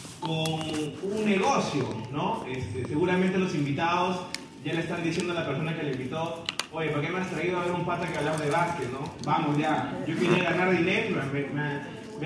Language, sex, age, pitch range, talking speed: Spanish, male, 30-49, 155-215 Hz, 195 wpm